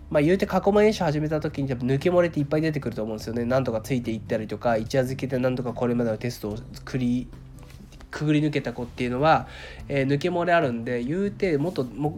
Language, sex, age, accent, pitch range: Japanese, male, 20-39, native, 120-155 Hz